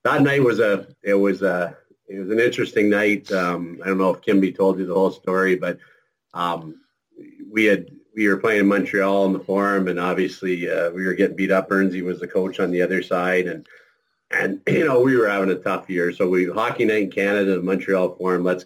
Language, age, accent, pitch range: English, 40-59, American, 90-100 Hz